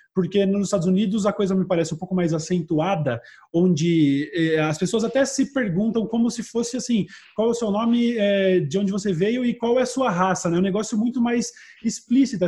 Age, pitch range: 20-39, 175-215 Hz